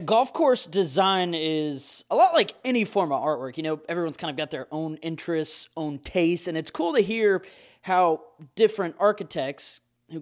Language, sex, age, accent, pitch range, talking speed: English, male, 20-39, American, 140-180 Hz, 180 wpm